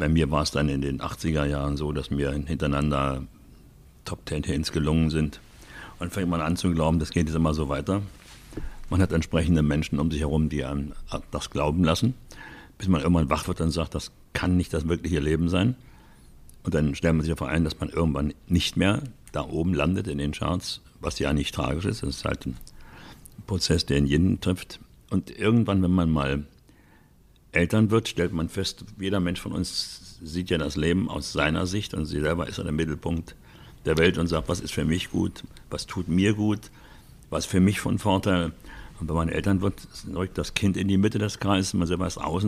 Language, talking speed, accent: German, 215 wpm, German